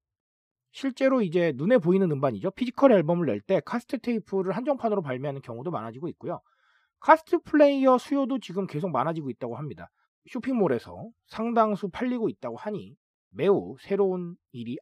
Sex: male